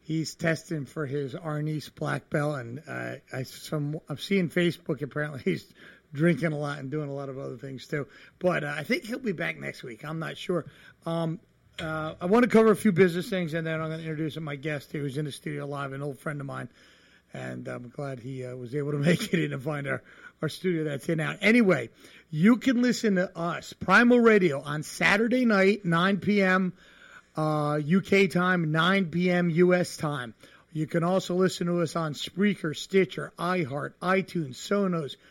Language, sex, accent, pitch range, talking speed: English, male, American, 150-180 Hz, 200 wpm